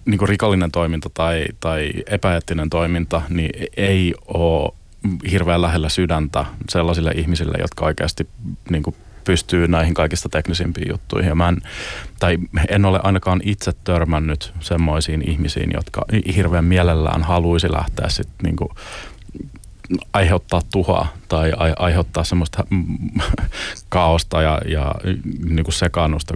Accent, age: native, 30-49